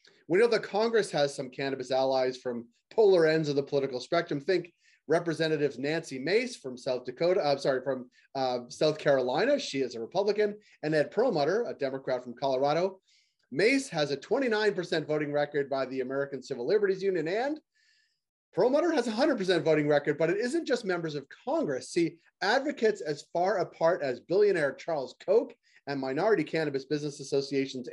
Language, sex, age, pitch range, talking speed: English, male, 30-49, 135-205 Hz, 170 wpm